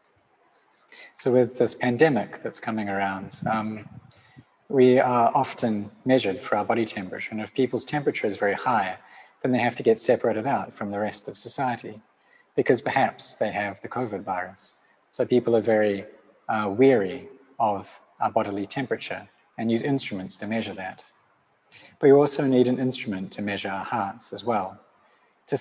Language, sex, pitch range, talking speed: English, male, 105-130 Hz, 165 wpm